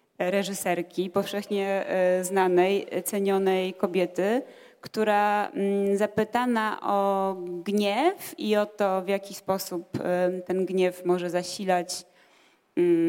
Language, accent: Polish, native